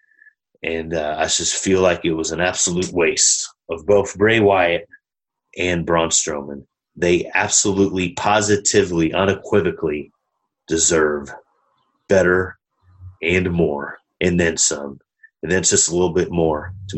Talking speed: 135 wpm